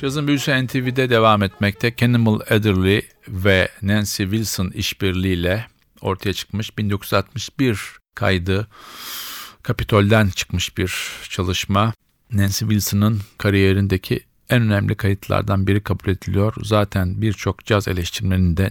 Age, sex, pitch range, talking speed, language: 50-69, male, 95-110 Hz, 105 wpm, Turkish